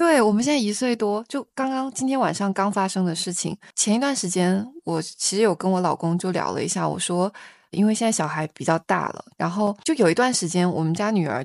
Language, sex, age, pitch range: Chinese, female, 20-39, 170-205 Hz